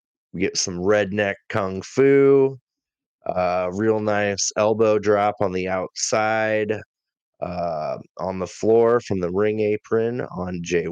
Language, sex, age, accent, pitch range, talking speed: English, male, 20-39, American, 95-125 Hz, 130 wpm